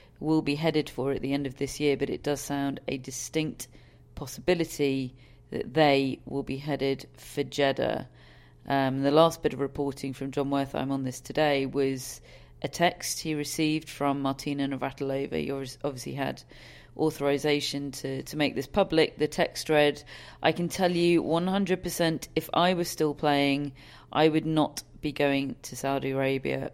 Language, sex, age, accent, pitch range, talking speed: English, female, 40-59, British, 135-160 Hz, 170 wpm